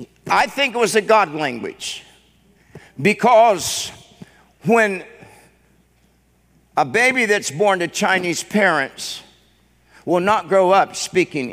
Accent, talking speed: American, 110 wpm